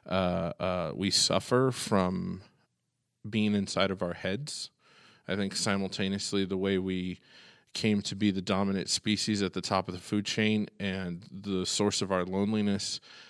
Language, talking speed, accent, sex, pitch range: English, 160 wpm, American, male, 95-110 Hz